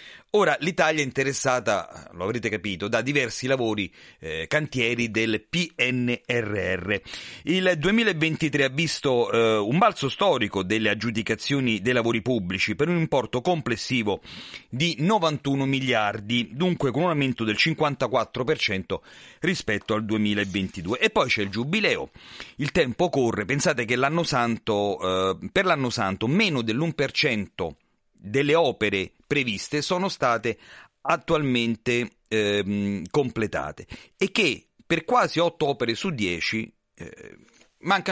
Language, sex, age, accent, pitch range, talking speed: Italian, male, 40-59, native, 110-150 Hz, 125 wpm